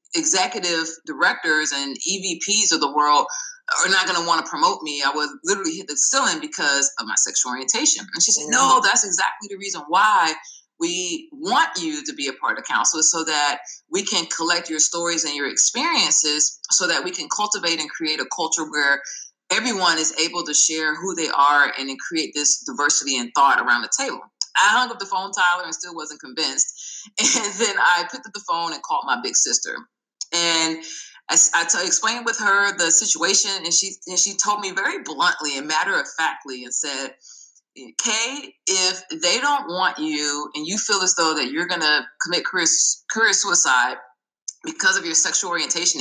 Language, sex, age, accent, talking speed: English, female, 30-49, American, 200 wpm